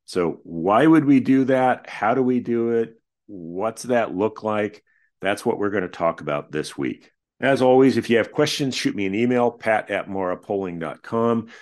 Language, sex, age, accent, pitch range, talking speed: English, male, 50-69, American, 95-120 Hz, 190 wpm